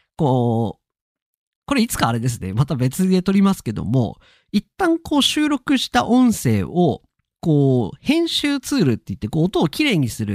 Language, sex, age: Japanese, male, 40-59